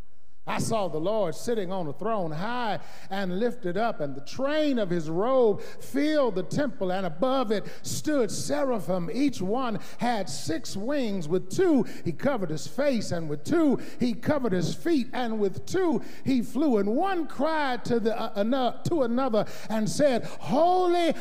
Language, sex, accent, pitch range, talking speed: English, male, American, 205-295 Hz, 175 wpm